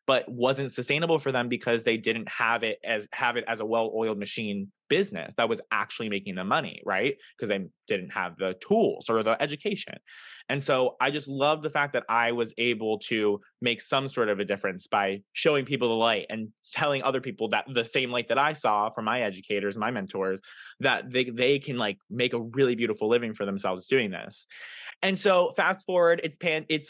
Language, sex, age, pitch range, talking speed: English, male, 20-39, 110-140 Hz, 210 wpm